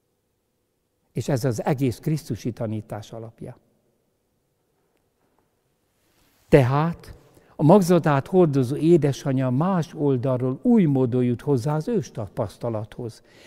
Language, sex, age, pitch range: Hungarian, male, 60-79, 115-160 Hz